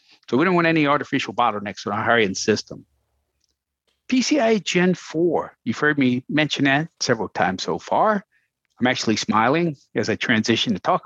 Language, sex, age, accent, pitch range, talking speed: English, male, 50-69, American, 125-170 Hz, 170 wpm